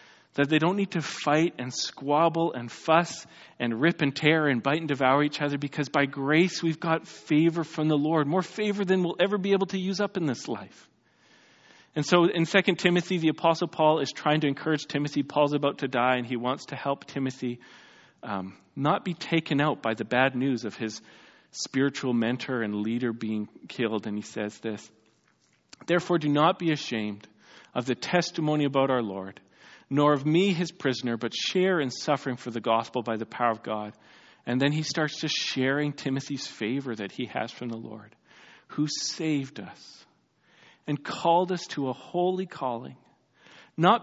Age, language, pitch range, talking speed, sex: 40-59, English, 125-170 Hz, 190 wpm, male